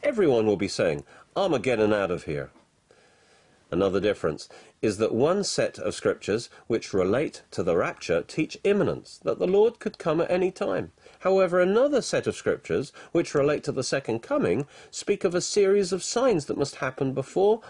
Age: 40-59